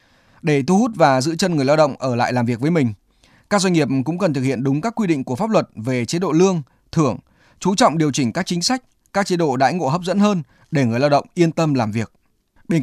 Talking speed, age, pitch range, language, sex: 270 wpm, 20-39, 135-185 Hz, Vietnamese, male